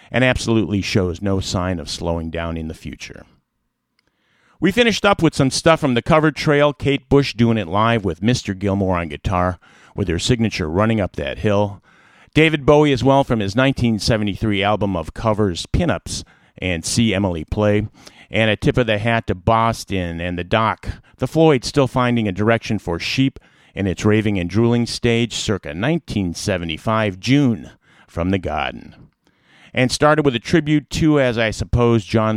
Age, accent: 50-69, American